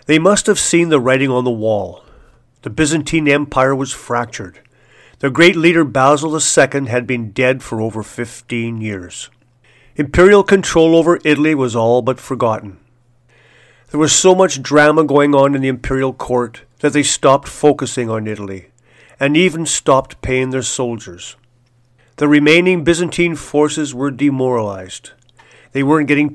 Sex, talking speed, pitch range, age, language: male, 150 wpm, 120-150 Hz, 40-59, English